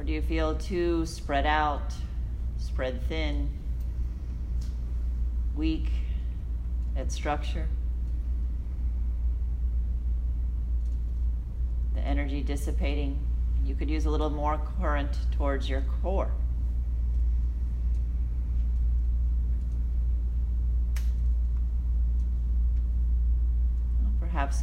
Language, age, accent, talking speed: English, 40-59, American, 65 wpm